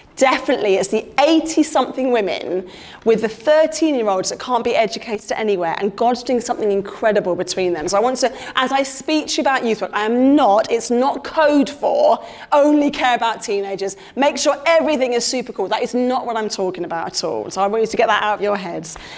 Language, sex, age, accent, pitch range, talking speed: English, female, 30-49, British, 210-305 Hz, 215 wpm